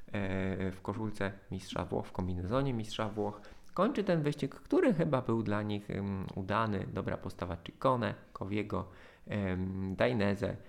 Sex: male